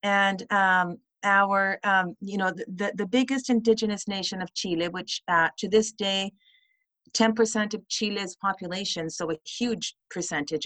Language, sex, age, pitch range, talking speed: English, female, 40-59, 175-220 Hz, 160 wpm